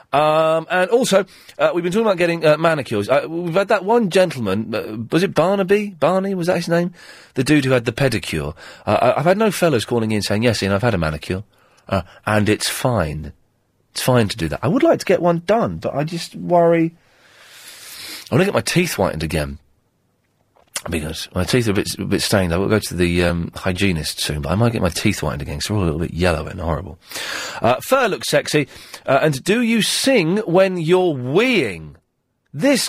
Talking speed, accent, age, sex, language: 220 wpm, British, 40-59, male, English